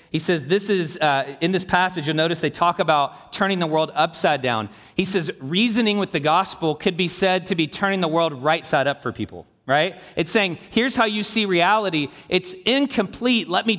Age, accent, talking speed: 30-49, American, 215 wpm